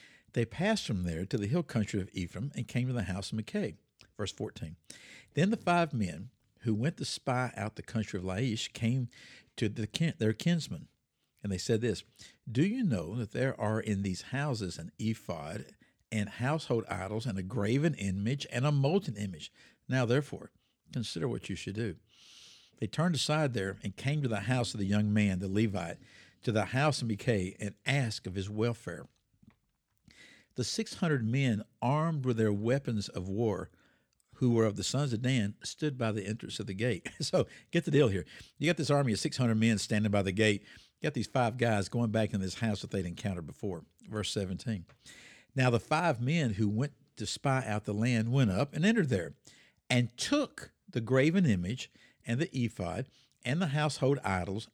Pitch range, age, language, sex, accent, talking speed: 105-135 Hz, 60-79, English, male, American, 195 wpm